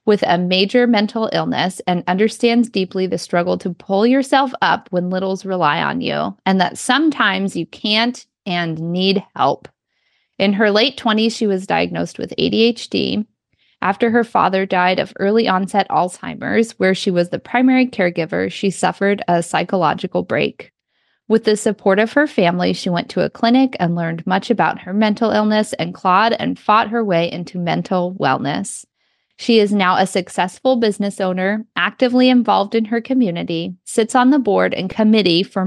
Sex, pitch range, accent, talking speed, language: female, 180-230 Hz, American, 170 wpm, English